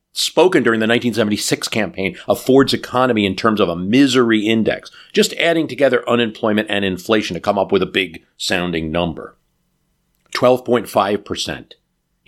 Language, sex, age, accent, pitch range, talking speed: English, male, 50-69, American, 95-120 Hz, 140 wpm